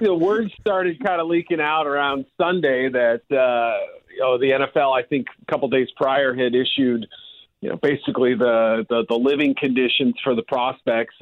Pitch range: 120-150 Hz